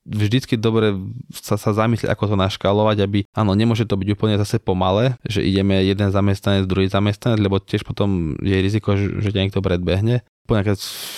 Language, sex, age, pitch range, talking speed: Slovak, male, 20-39, 95-105 Hz, 175 wpm